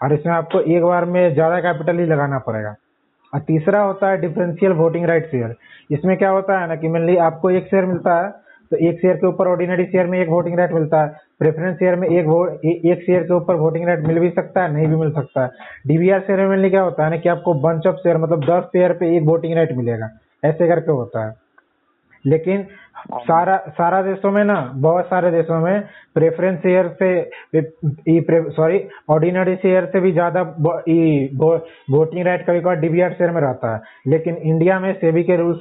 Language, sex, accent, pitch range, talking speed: Hindi, male, native, 160-180 Hz, 210 wpm